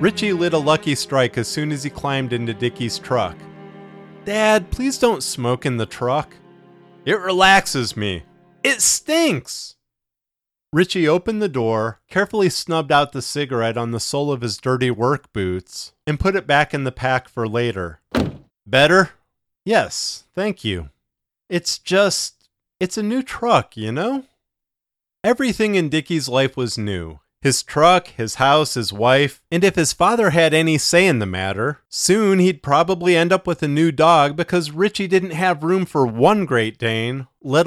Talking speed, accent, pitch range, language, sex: 165 wpm, American, 115-180 Hz, English, male